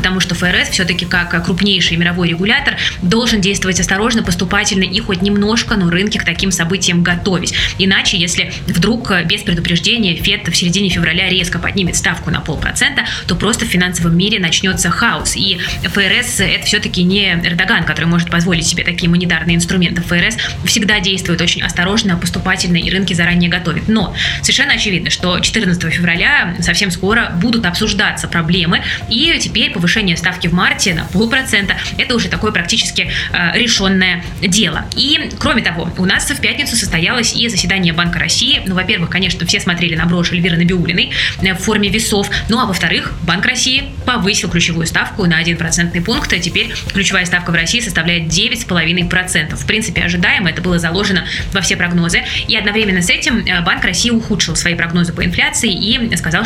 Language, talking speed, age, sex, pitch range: Russian, 175 wpm, 20-39, female, 175-205 Hz